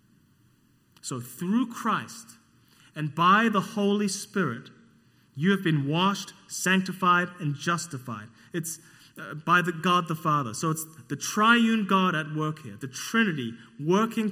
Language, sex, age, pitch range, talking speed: English, male, 30-49, 120-175 Hz, 130 wpm